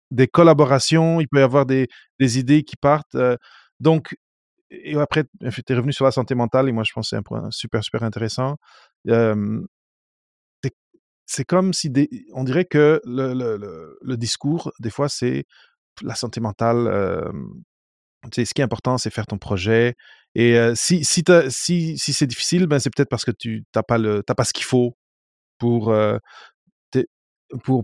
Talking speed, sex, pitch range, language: 185 wpm, male, 110-135 Hz, French